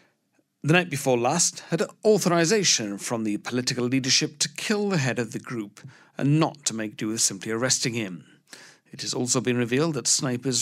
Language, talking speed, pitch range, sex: English, 185 wpm, 110-140 Hz, male